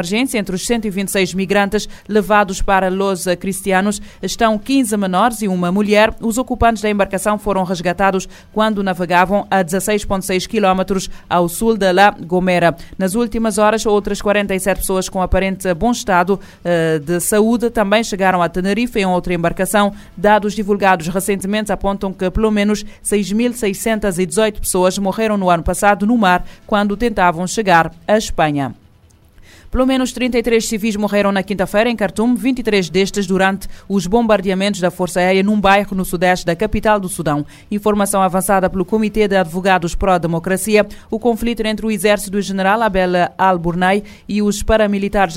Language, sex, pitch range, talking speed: Portuguese, female, 185-210 Hz, 150 wpm